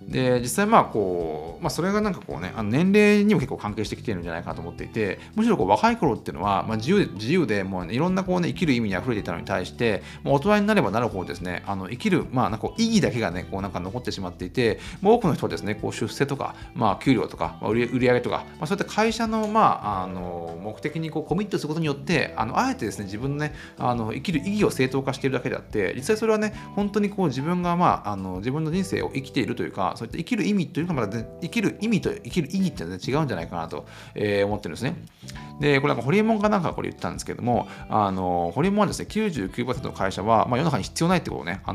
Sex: male